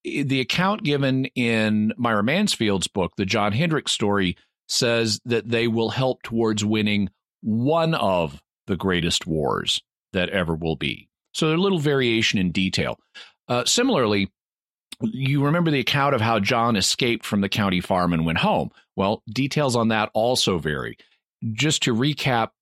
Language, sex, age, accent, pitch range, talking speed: English, male, 40-59, American, 100-130 Hz, 155 wpm